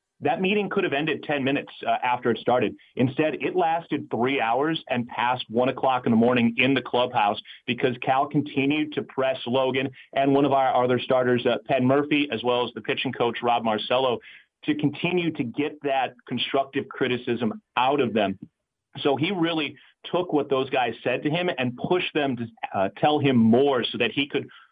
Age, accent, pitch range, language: 30-49, American, 125-150 Hz, English